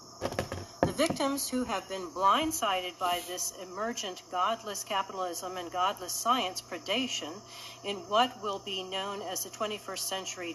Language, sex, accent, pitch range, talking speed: English, female, American, 195-265 Hz, 130 wpm